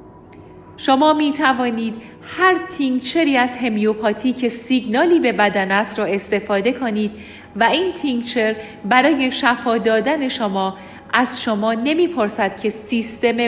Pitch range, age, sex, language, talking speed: 220-280 Hz, 40-59, female, Persian, 120 wpm